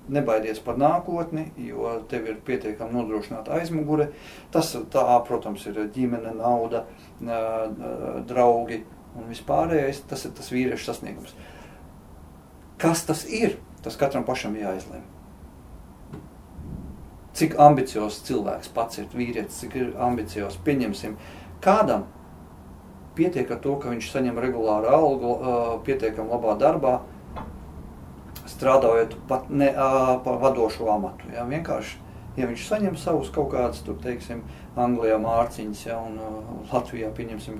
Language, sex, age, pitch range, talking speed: English, male, 40-59, 105-130 Hz, 120 wpm